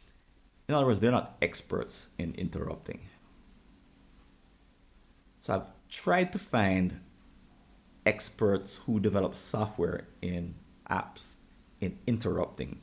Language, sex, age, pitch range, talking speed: English, male, 30-49, 90-105 Hz, 100 wpm